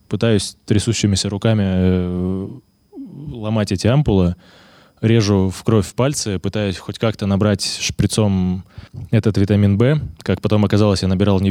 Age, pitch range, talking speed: 20-39, 100-120 Hz, 130 wpm